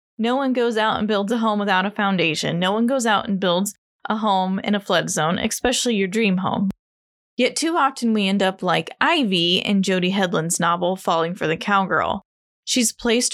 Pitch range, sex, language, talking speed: 190-240 Hz, female, English, 205 wpm